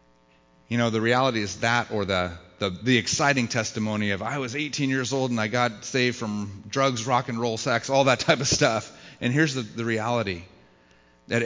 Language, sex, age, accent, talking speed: English, male, 30-49, American, 205 wpm